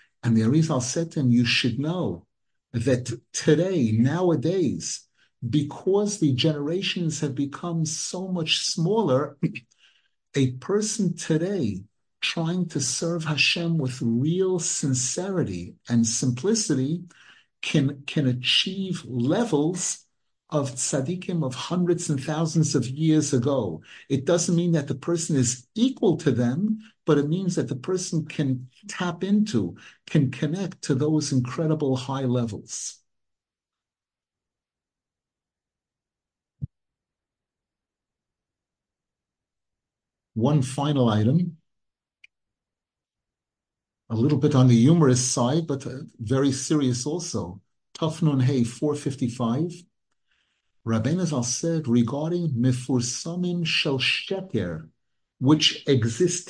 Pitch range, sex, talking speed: 125-170 Hz, male, 105 wpm